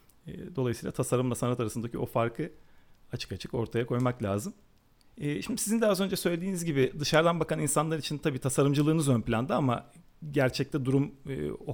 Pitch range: 120-155 Hz